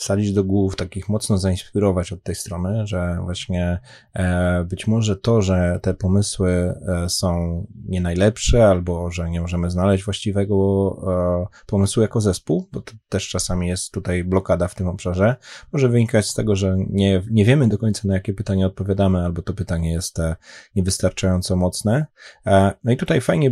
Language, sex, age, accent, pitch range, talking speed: Polish, male, 20-39, native, 90-105 Hz, 160 wpm